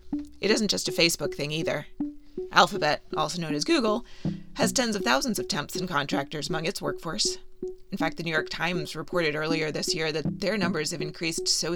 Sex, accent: female, American